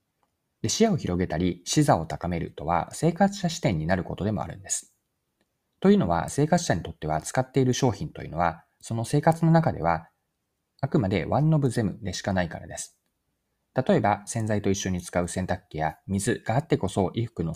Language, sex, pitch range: Japanese, male, 90-135 Hz